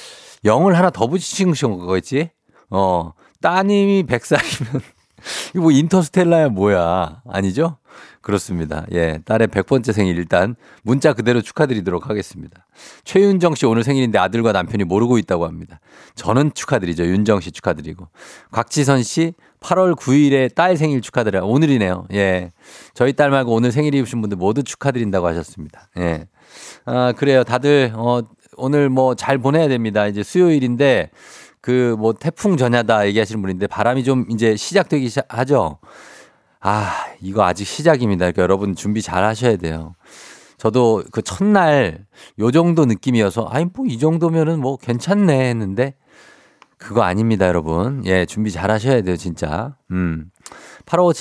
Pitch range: 100-145 Hz